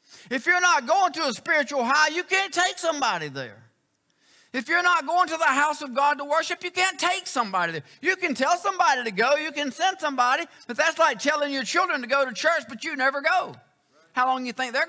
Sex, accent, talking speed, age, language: male, American, 240 wpm, 50-69, English